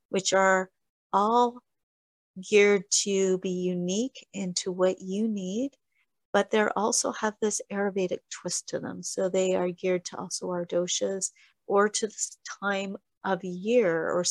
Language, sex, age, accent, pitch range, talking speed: English, female, 40-59, American, 180-200 Hz, 145 wpm